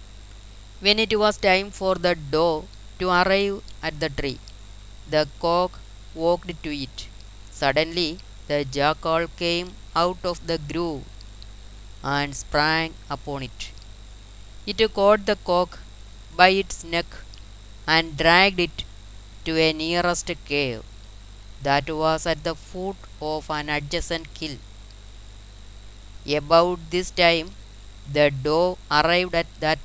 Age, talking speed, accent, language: 20-39, 120 wpm, native, Malayalam